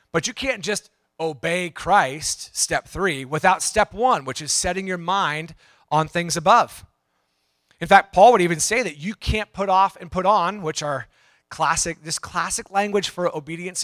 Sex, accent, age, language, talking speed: male, American, 30-49, English, 180 wpm